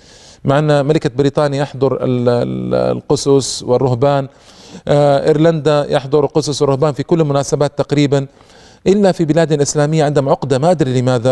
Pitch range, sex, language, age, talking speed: 125-155 Hz, male, Arabic, 40-59, 125 wpm